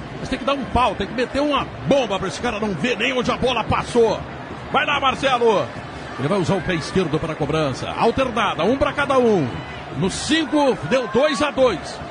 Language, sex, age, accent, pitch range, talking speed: Portuguese, male, 60-79, Brazilian, 195-270 Hz, 220 wpm